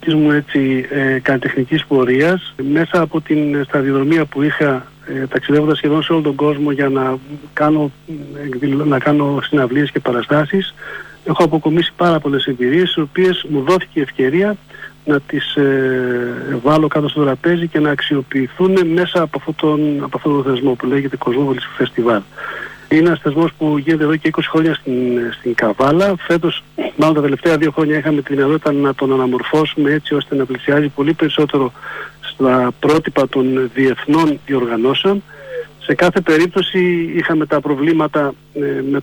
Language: Greek